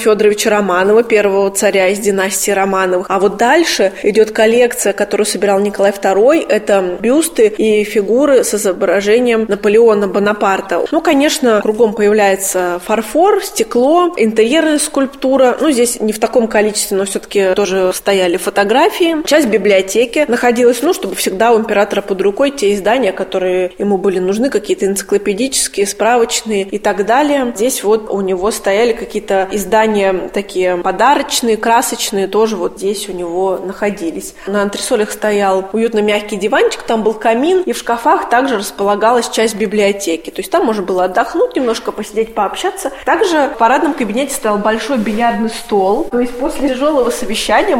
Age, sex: 20-39, female